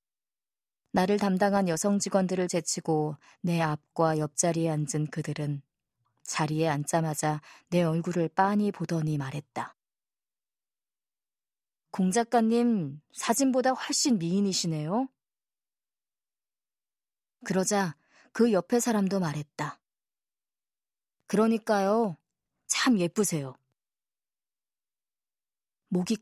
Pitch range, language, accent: 160-220 Hz, Korean, native